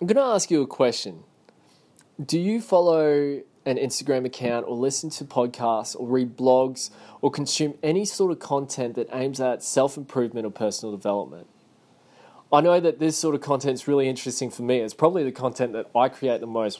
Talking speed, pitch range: 195 wpm, 120-145 Hz